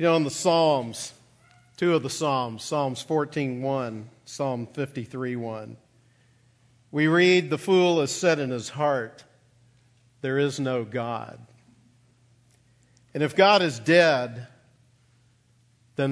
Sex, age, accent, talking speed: male, 50-69, American, 125 wpm